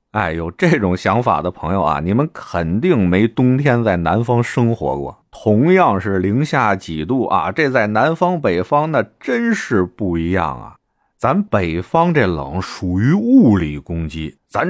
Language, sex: Chinese, male